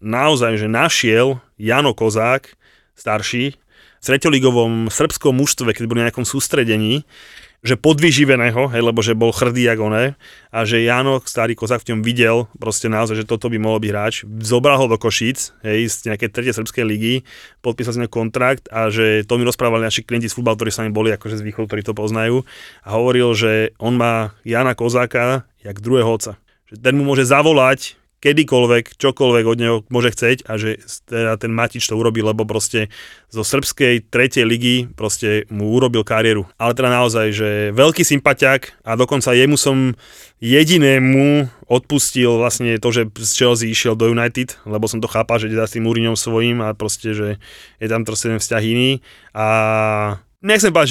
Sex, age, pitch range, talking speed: male, 30-49, 110-130 Hz, 180 wpm